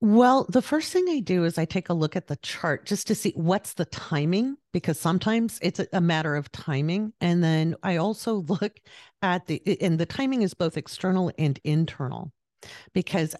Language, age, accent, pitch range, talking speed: English, 50-69, American, 140-195 Hz, 195 wpm